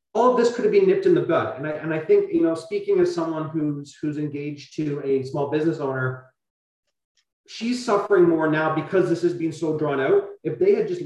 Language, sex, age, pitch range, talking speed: English, male, 30-49, 145-190 Hz, 235 wpm